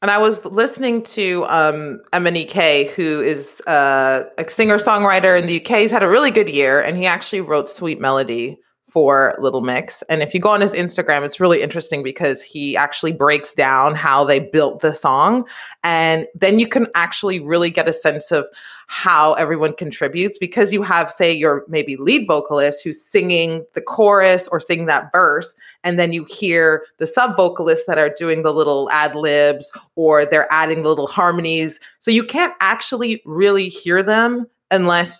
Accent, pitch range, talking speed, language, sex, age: American, 155-210 Hz, 180 wpm, English, female, 30-49